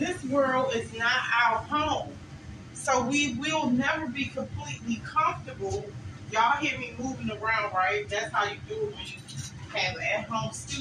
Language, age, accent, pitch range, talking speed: English, 40-59, American, 175-260 Hz, 120 wpm